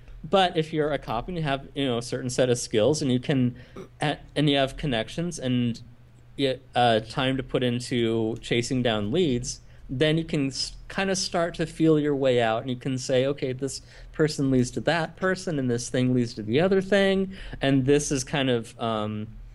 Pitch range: 115-140 Hz